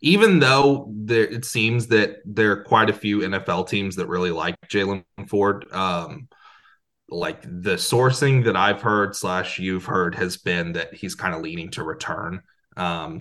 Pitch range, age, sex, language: 90-115 Hz, 30-49, male, English